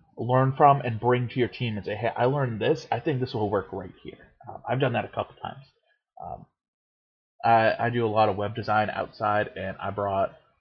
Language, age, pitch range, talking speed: English, 30-49, 100-125 Hz, 225 wpm